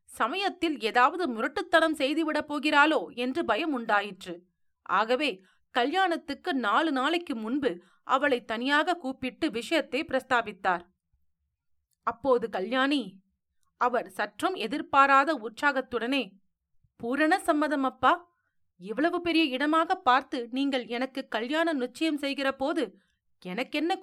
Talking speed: 95 wpm